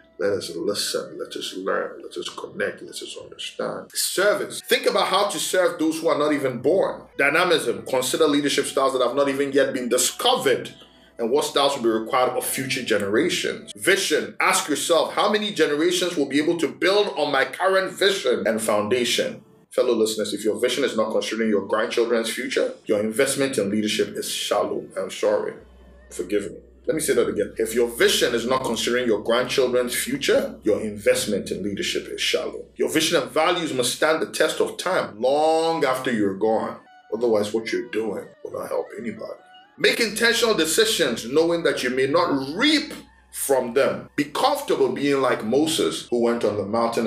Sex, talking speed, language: male, 185 wpm, English